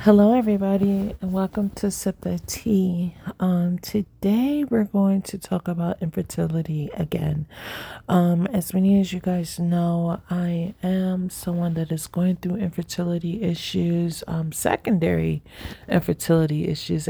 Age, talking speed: 30-49, 130 wpm